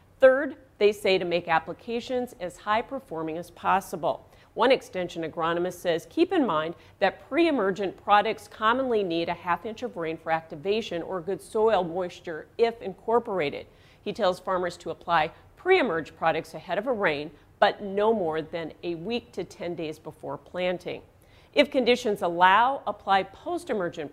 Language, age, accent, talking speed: English, 40-59, American, 155 wpm